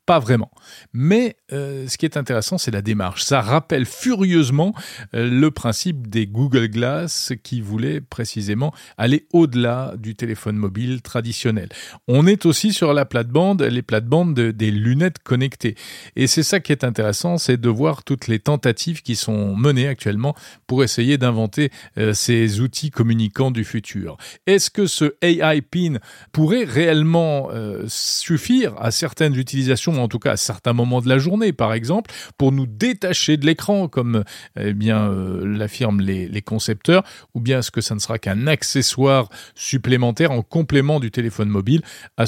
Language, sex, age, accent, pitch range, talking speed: French, male, 40-59, French, 115-160 Hz, 165 wpm